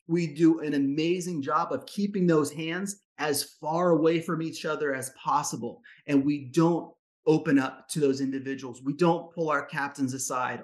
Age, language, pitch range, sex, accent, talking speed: 30-49, English, 140-165 Hz, male, American, 175 wpm